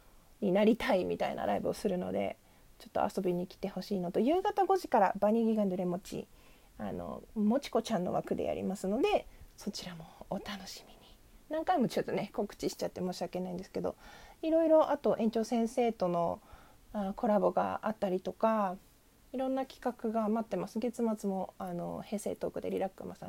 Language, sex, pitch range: Japanese, female, 195-265 Hz